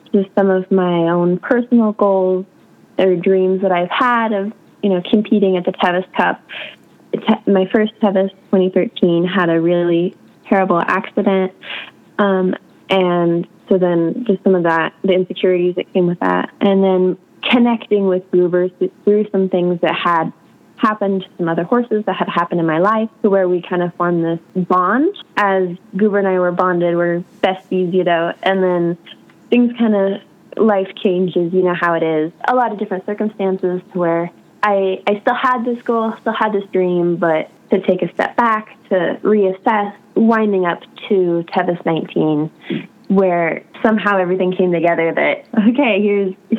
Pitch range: 180-210 Hz